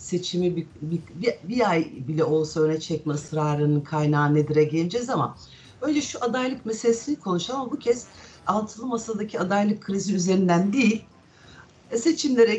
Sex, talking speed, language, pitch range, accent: female, 135 wpm, Turkish, 170-235 Hz, native